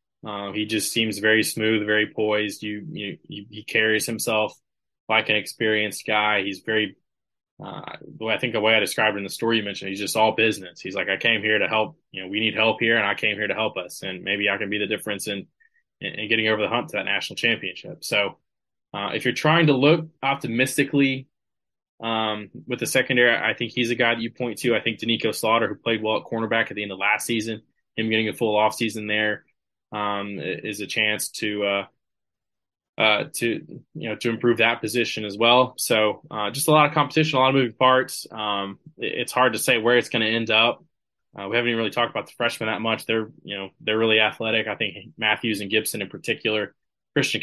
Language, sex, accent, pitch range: English, male, American, 105-120 Hz